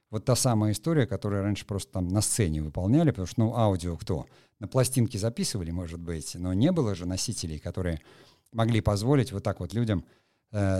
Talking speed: 190 wpm